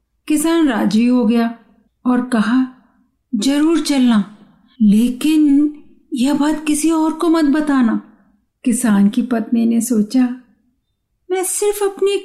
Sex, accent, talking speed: female, native, 120 wpm